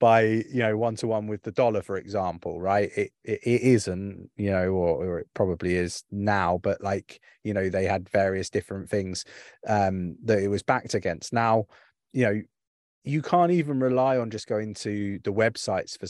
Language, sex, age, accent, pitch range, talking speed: English, male, 20-39, British, 100-115 Hz, 190 wpm